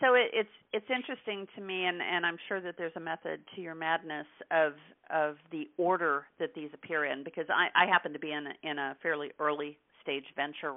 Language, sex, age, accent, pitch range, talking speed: English, female, 50-69, American, 145-170 Hz, 215 wpm